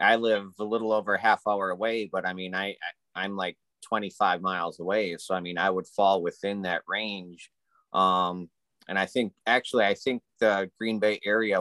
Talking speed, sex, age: 200 wpm, male, 30-49